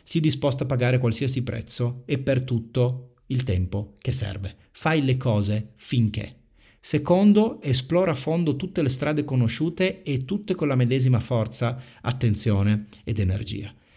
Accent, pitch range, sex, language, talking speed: native, 105-140 Hz, male, Italian, 145 wpm